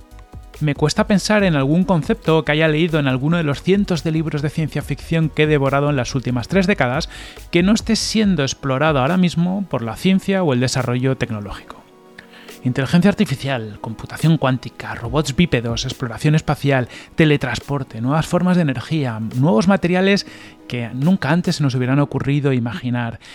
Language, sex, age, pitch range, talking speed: Spanish, male, 30-49, 130-175 Hz, 165 wpm